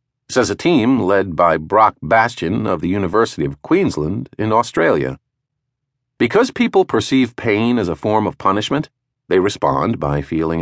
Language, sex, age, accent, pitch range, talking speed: English, male, 50-69, American, 90-135 Hz, 155 wpm